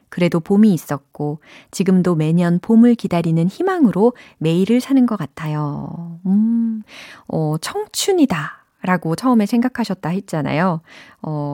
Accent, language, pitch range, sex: native, Korean, 160-240 Hz, female